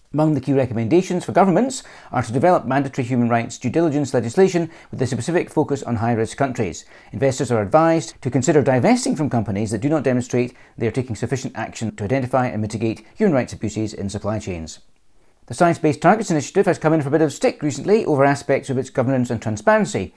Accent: British